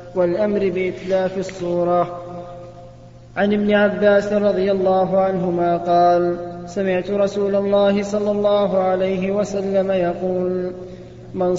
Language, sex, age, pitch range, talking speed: Arabic, male, 20-39, 180-200 Hz, 100 wpm